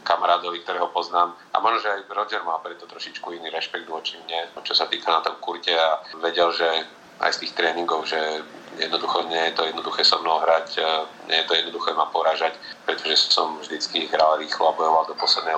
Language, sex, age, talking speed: Slovak, male, 40-59, 210 wpm